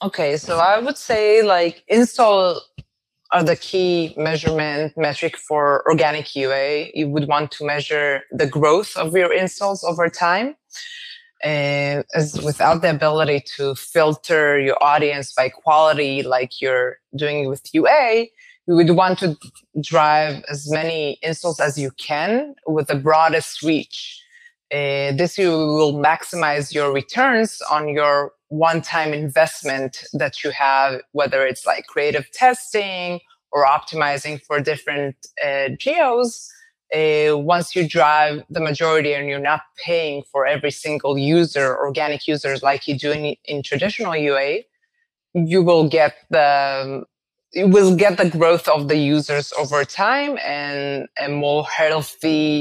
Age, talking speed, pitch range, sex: 20-39, 140 wpm, 145-175 Hz, female